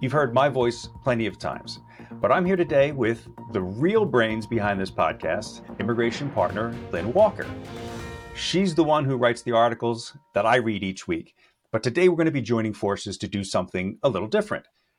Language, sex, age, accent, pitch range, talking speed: English, male, 40-59, American, 115-155 Hz, 190 wpm